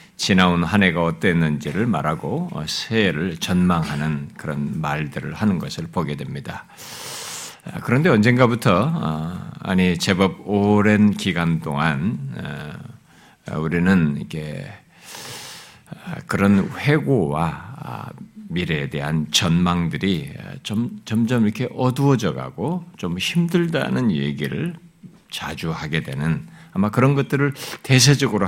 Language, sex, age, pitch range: Korean, male, 50-69, 90-125 Hz